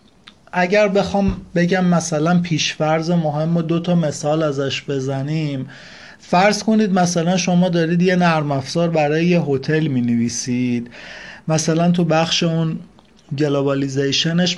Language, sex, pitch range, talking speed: Persian, male, 145-185 Hz, 120 wpm